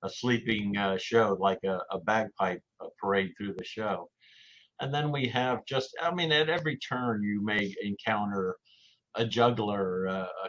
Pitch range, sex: 95-110 Hz, male